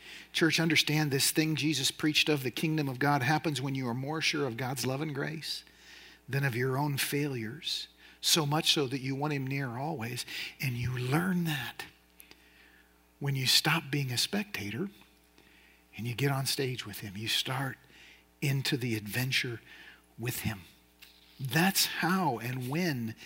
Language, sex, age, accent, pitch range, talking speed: English, male, 50-69, American, 115-160 Hz, 165 wpm